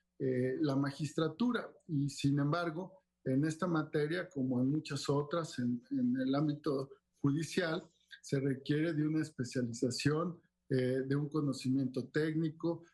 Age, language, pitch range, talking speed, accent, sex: 50-69, Spanish, 135-160 Hz, 130 wpm, Mexican, male